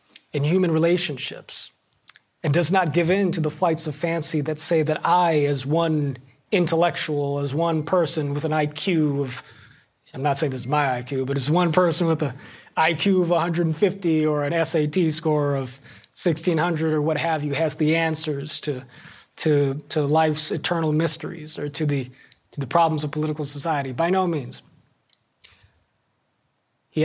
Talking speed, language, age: 165 wpm, English, 30-49